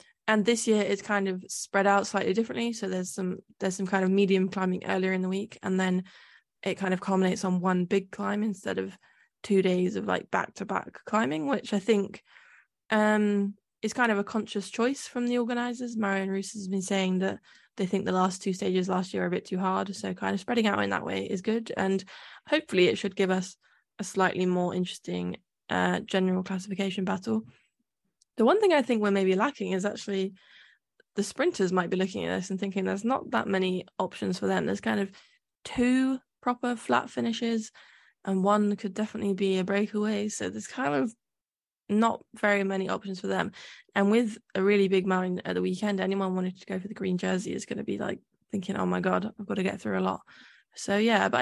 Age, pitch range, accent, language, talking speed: 10-29, 190-215 Hz, British, English, 215 wpm